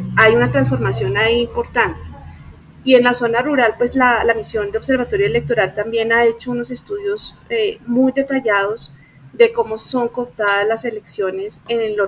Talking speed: 165 wpm